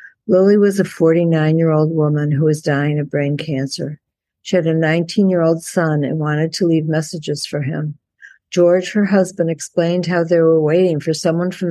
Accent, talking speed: American, 175 wpm